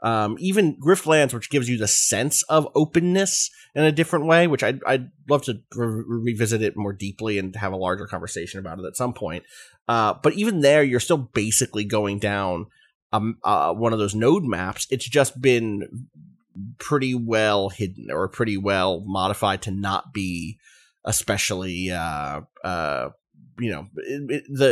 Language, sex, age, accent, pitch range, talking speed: English, male, 30-49, American, 105-140 Hz, 165 wpm